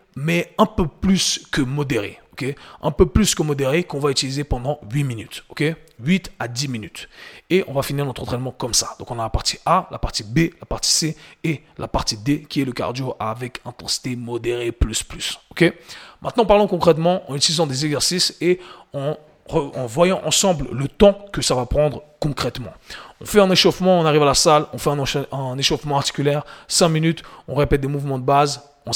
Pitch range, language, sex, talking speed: 130-170 Hz, French, male, 200 wpm